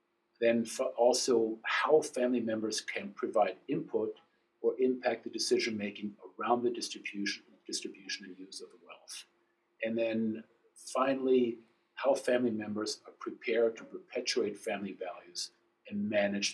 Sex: male